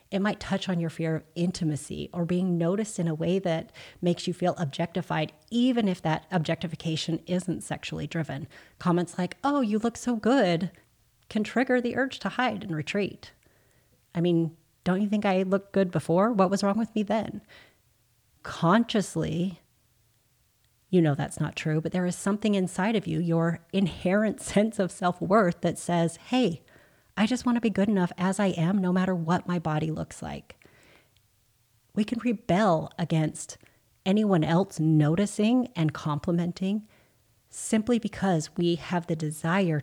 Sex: female